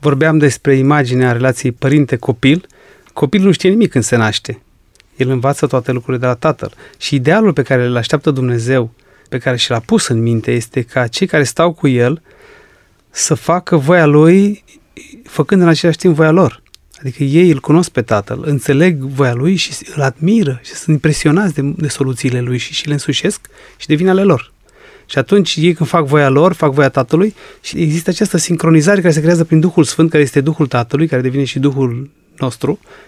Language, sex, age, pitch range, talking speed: Romanian, male, 30-49, 135-175 Hz, 190 wpm